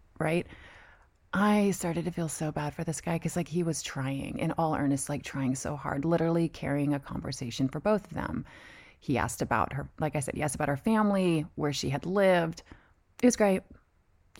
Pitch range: 145-195 Hz